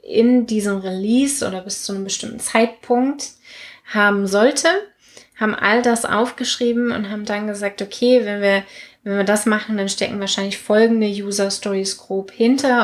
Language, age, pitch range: German, 20-39, 195-230 Hz